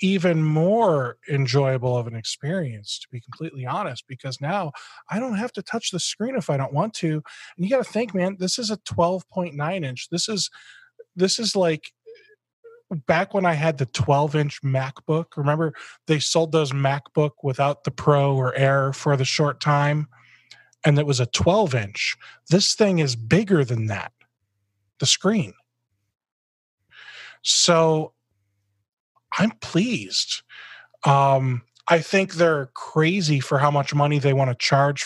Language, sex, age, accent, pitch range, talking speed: English, male, 20-39, American, 130-175 Hz, 160 wpm